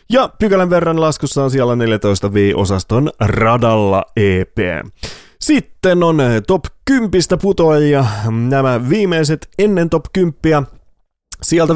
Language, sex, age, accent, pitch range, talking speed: English, male, 30-49, Finnish, 115-175 Hz, 105 wpm